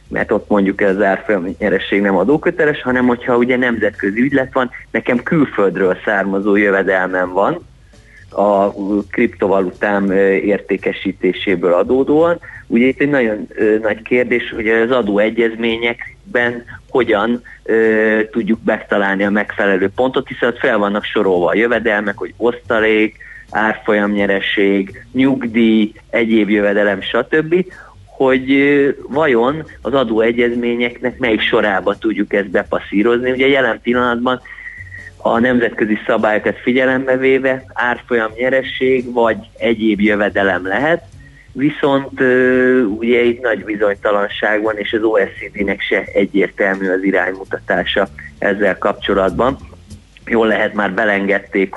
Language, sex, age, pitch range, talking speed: Hungarian, male, 30-49, 100-125 Hz, 110 wpm